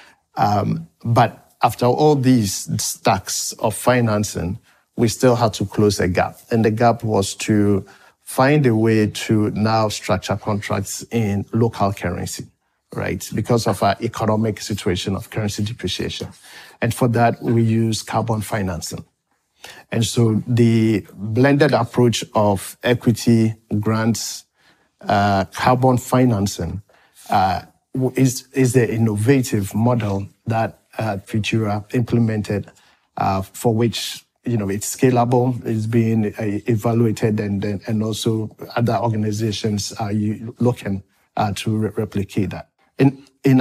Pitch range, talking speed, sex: 105-120 Hz, 125 wpm, male